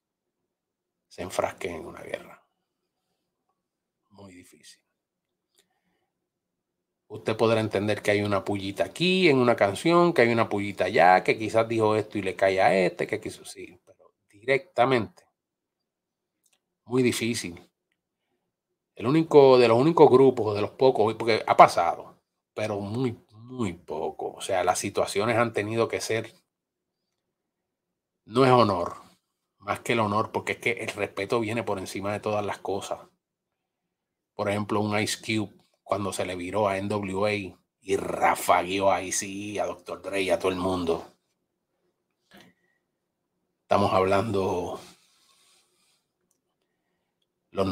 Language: Spanish